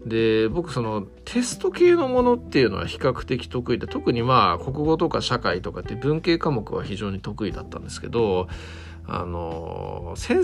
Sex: male